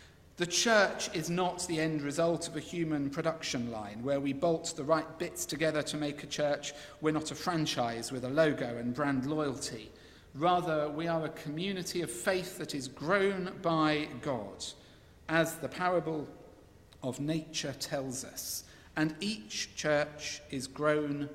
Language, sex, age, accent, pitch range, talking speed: English, male, 50-69, British, 135-170 Hz, 165 wpm